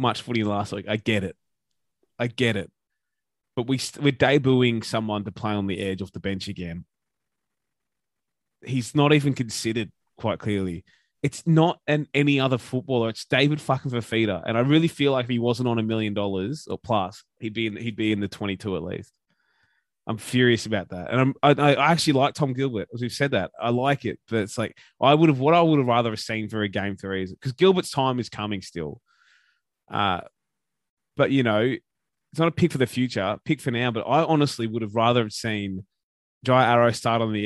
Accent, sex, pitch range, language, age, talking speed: Australian, male, 105-140 Hz, English, 20-39, 215 wpm